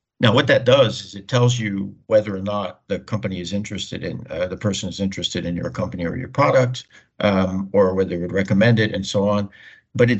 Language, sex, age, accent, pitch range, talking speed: English, male, 60-79, American, 95-120 Hz, 230 wpm